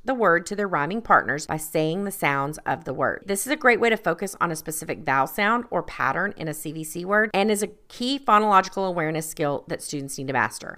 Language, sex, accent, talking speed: English, female, American, 240 wpm